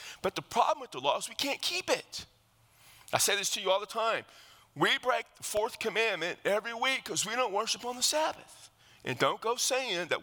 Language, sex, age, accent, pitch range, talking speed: English, male, 40-59, American, 145-230 Hz, 225 wpm